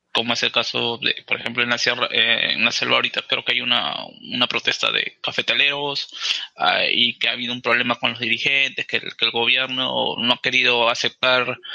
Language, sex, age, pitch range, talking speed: Spanish, male, 20-39, 120-145 Hz, 210 wpm